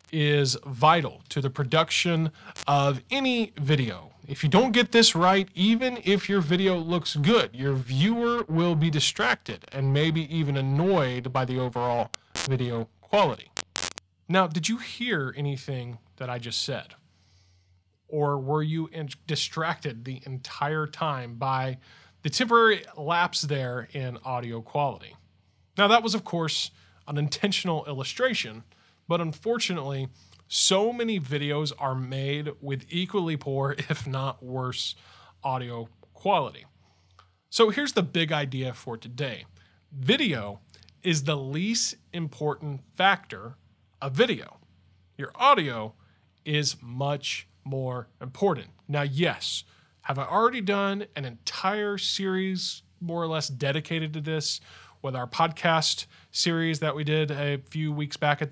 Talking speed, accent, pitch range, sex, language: 130 wpm, American, 125-170 Hz, male, English